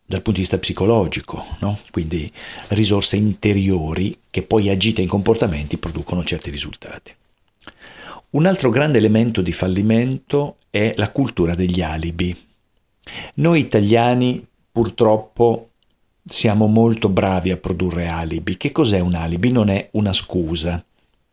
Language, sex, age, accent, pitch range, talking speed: Italian, male, 50-69, native, 95-120 Hz, 125 wpm